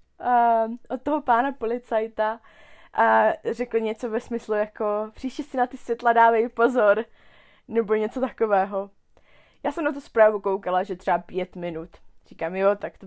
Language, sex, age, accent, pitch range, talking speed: Czech, female, 20-39, native, 185-230 Hz, 165 wpm